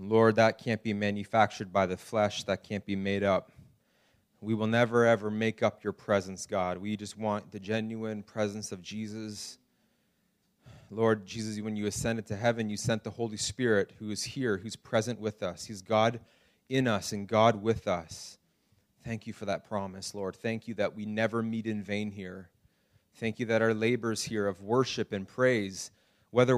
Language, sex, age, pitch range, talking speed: English, male, 30-49, 100-115 Hz, 185 wpm